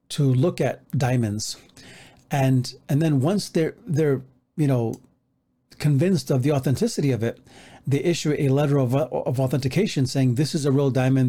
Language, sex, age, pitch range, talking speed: English, male, 40-59, 130-160 Hz, 165 wpm